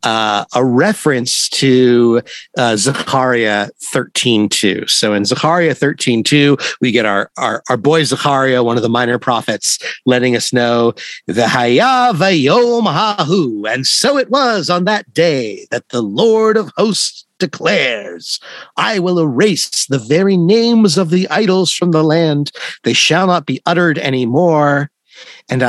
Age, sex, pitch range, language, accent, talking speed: 50-69, male, 125-185 Hz, English, American, 140 wpm